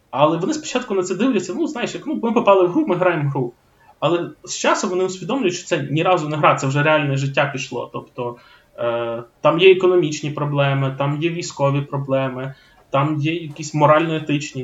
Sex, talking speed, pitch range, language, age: male, 195 wpm, 135-180 Hz, Ukrainian, 20-39